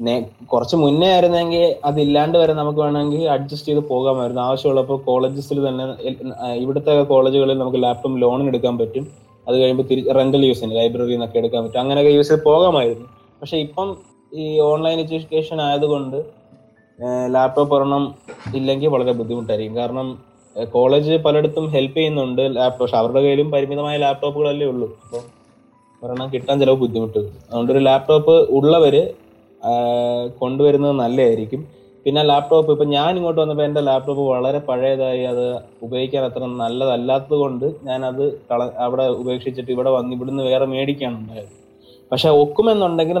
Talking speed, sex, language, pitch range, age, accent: 130 wpm, male, Malayalam, 125-145 Hz, 20-39, native